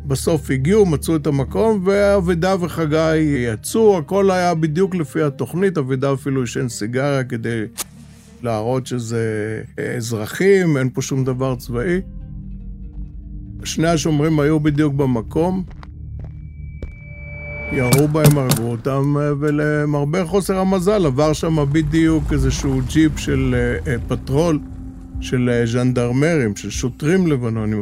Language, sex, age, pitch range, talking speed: Hebrew, male, 50-69, 125-160 Hz, 110 wpm